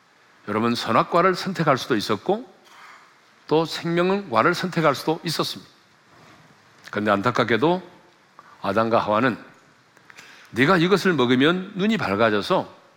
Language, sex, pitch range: Korean, male, 115-185 Hz